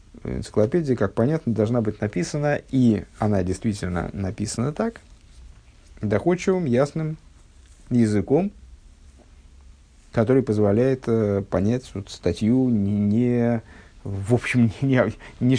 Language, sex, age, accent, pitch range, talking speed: Russian, male, 50-69, native, 100-120 Hz, 100 wpm